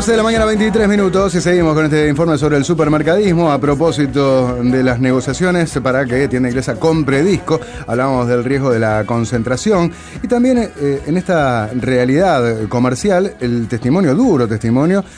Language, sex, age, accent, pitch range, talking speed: Spanish, male, 30-49, Argentinian, 110-150 Hz, 165 wpm